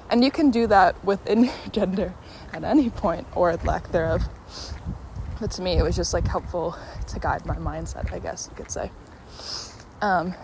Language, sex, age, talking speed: English, female, 20-39, 185 wpm